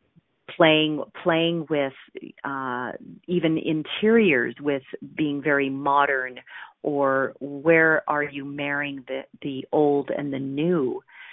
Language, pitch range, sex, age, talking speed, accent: English, 135-160 Hz, female, 40-59, 110 wpm, American